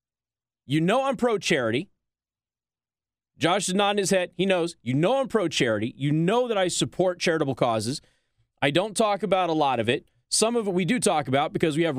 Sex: male